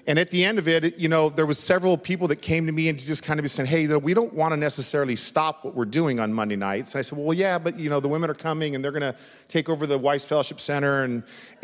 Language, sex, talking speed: English, male, 300 wpm